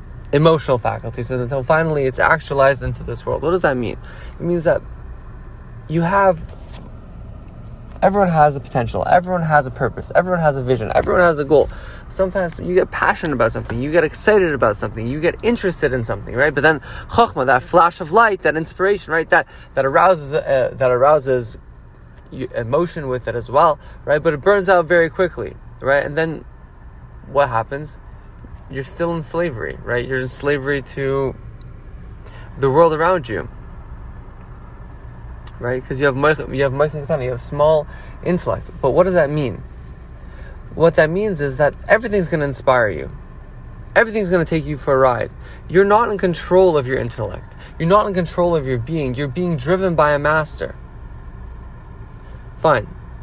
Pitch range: 120-170 Hz